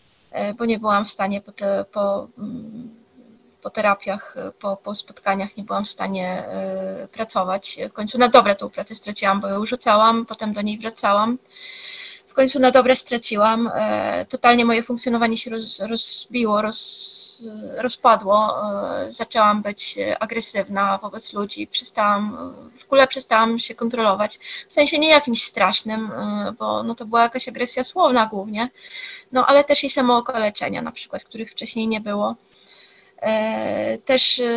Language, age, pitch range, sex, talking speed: Polish, 20-39, 205-245 Hz, female, 135 wpm